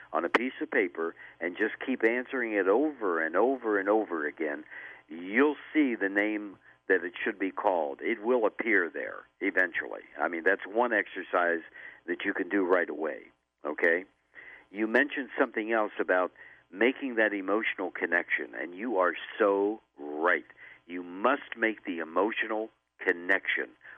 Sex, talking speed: male, 155 wpm